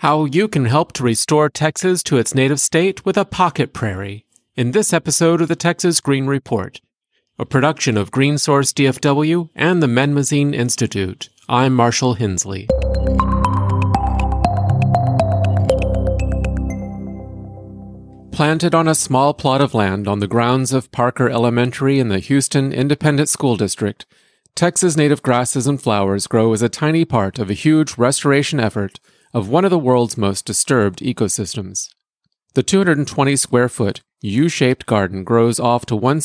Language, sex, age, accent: English, male, 40-59, American